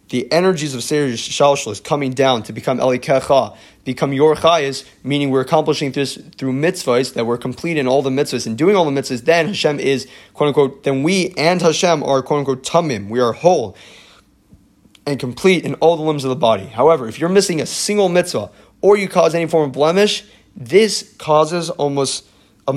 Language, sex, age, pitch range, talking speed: English, male, 30-49, 130-160 Hz, 200 wpm